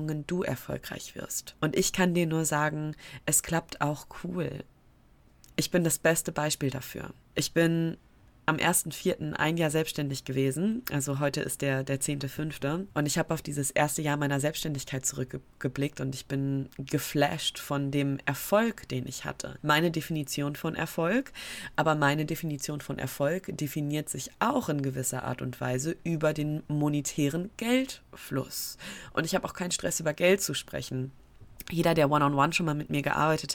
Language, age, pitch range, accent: German, 20-39, 140-165 Hz, German